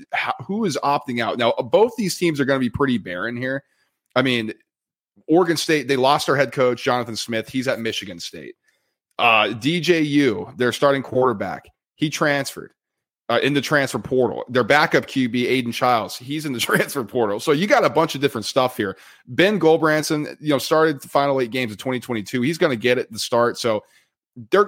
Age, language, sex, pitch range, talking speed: 30-49, English, male, 120-150 Hz, 200 wpm